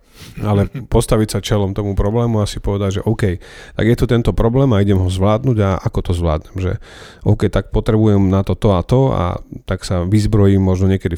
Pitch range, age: 95-110 Hz, 30-49